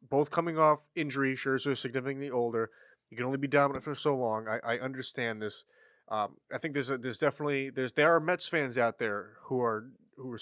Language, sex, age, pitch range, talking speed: English, male, 20-39, 115-150 Hz, 225 wpm